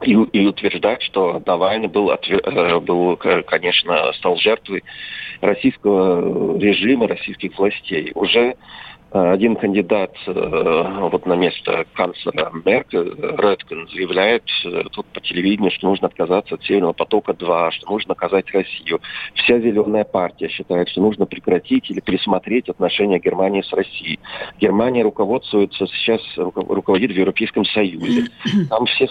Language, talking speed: Russian, 120 wpm